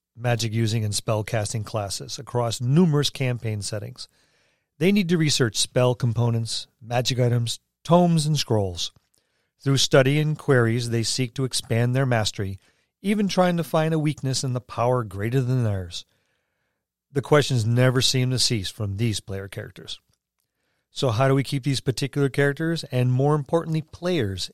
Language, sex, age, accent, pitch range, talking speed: English, male, 40-59, American, 110-145 Hz, 155 wpm